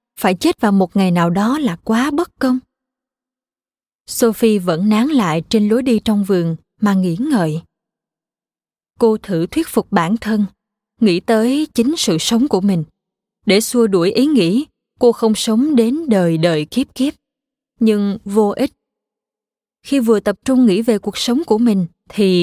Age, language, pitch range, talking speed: 20-39, Vietnamese, 190-245 Hz, 170 wpm